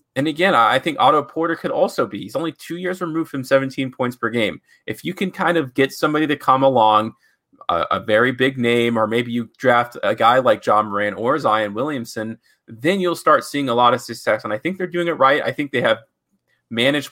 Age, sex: 30-49, male